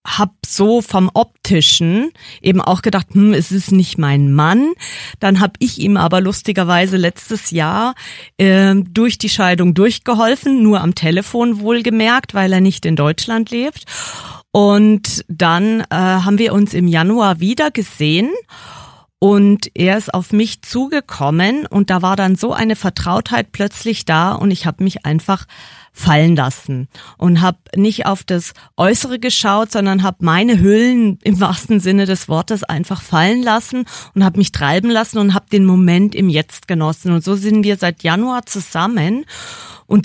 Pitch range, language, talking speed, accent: 180-220 Hz, German, 160 wpm, German